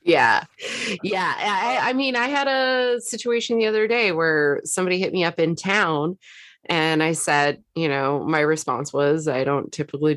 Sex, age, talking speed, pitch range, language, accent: female, 20-39, 175 wpm, 140-180 Hz, English, American